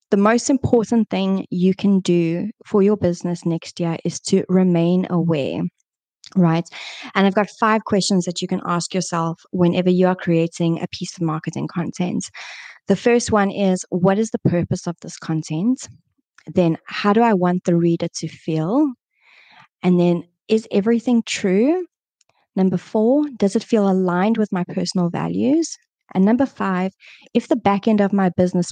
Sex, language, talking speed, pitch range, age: female, English, 170 wpm, 175-205 Hz, 20-39